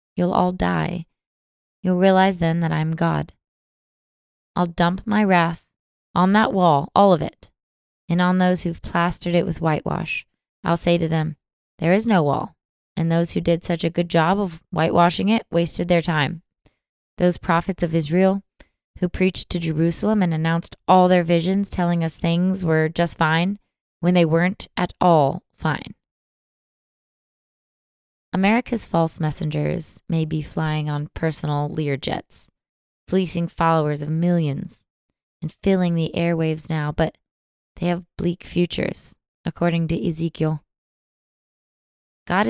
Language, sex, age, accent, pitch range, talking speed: English, female, 20-39, American, 160-180 Hz, 145 wpm